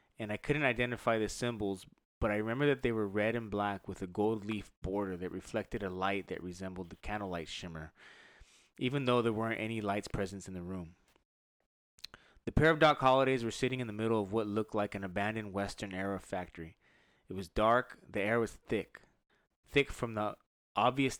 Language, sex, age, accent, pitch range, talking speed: English, male, 20-39, American, 95-120 Hz, 190 wpm